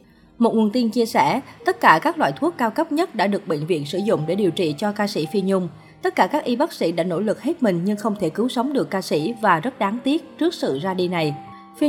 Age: 20-39